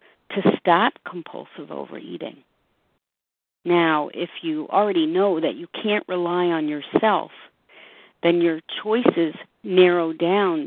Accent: American